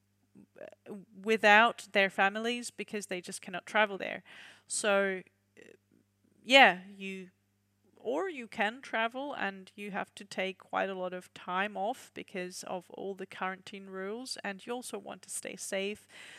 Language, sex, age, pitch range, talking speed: English, female, 30-49, 185-210 Hz, 145 wpm